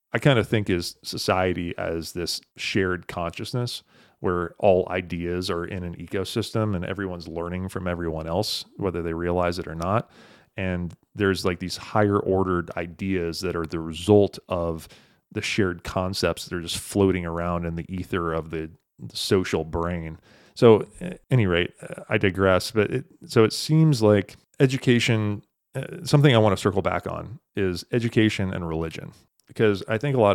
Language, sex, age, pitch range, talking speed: English, male, 30-49, 85-110 Hz, 170 wpm